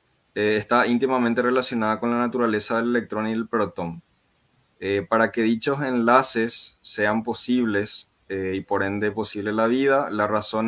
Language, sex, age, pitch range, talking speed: Spanish, male, 20-39, 105-120 Hz, 155 wpm